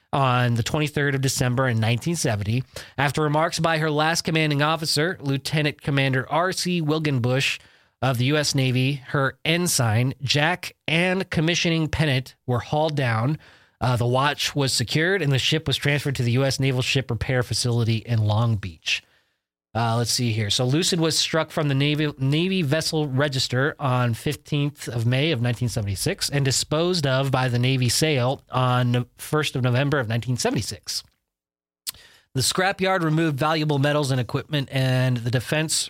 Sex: male